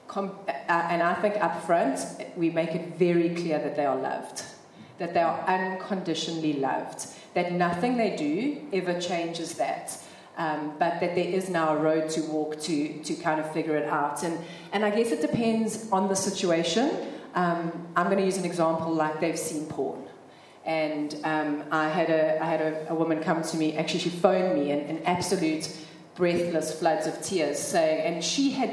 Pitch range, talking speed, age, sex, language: 160-195 Hz, 195 wpm, 30-49, female, English